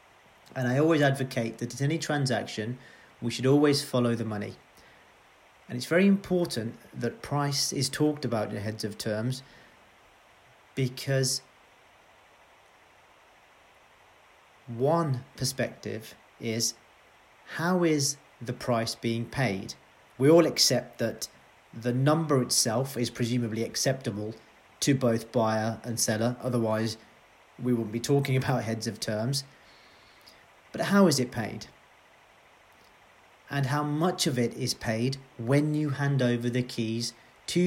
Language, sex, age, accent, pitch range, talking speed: English, male, 40-59, British, 115-140 Hz, 130 wpm